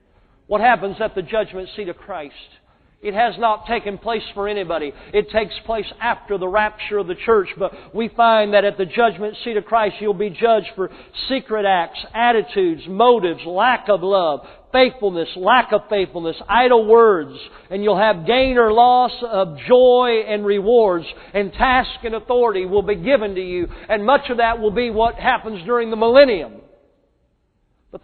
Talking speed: 175 wpm